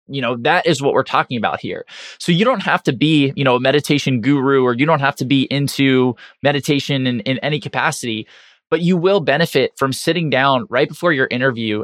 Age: 20-39